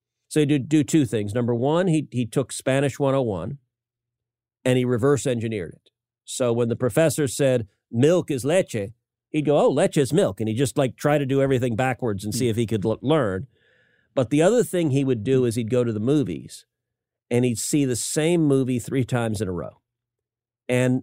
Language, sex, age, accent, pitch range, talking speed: English, male, 50-69, American, 120-145 Hz, 205 wpm